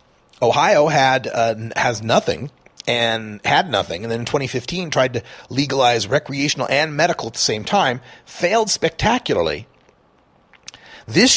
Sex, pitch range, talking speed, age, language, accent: male, 120-160 Hz, 130 wpm, 40-59, English, American